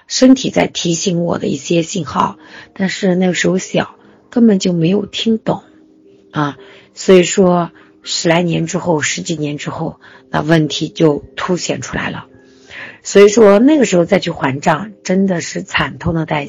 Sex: female